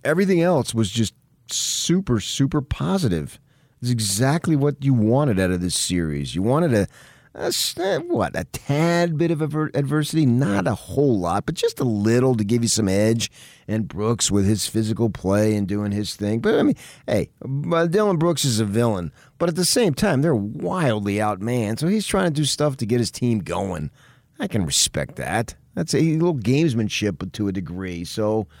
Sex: male